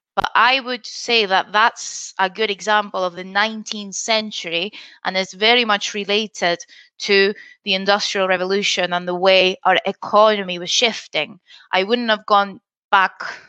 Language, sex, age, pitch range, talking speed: English, female, 20-39, 185-225 Hz, 150 wpm